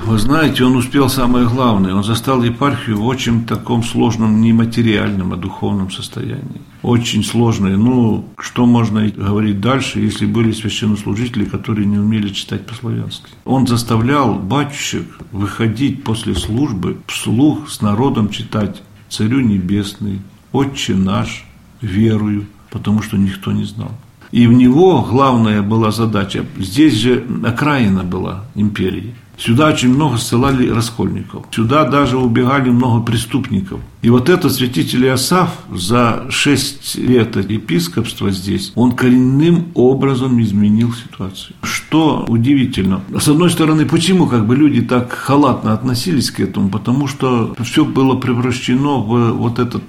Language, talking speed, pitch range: Russian, 135 wpm, 105-135 Hz